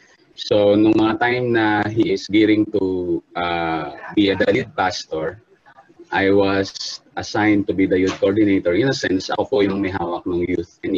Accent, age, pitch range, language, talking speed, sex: native, 20-39, 95-130 Hz, Filipino, 180 wpm, male